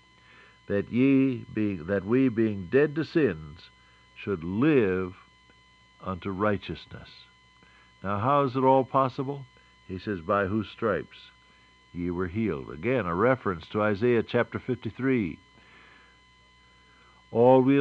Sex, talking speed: male, 120 wpm